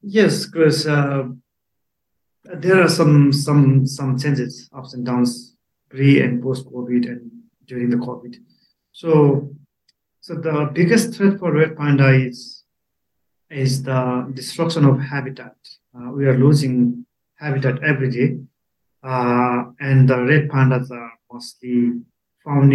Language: English